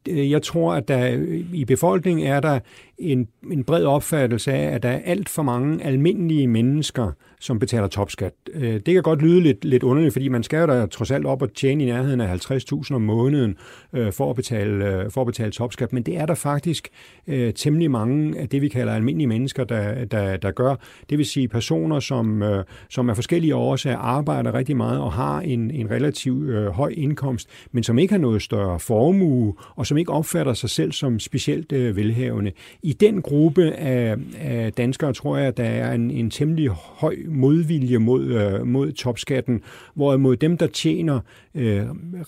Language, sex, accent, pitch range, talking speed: Danish, male, native, 115-150 Hz, 185 wpm